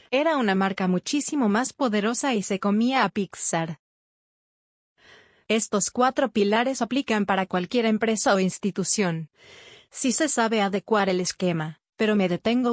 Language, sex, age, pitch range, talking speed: Spanish, female, 30-49, 185-225 Hz, 140 wpm